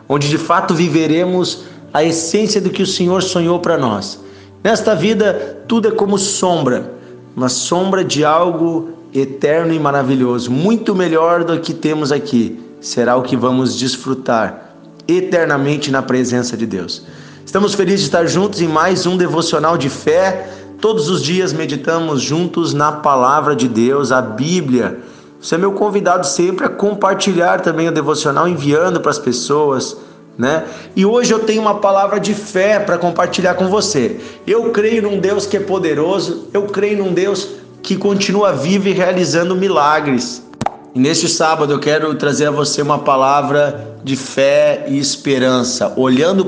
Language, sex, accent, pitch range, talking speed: Portuguese, male, Brazilian, 140-185 Hz, 160 wpm